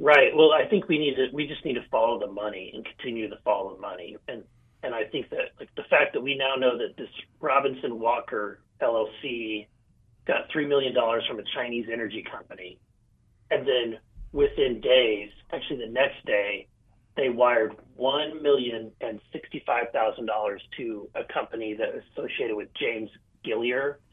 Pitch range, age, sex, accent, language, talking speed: 115-145 Hz, 40-59, male, American, English, 160 wpm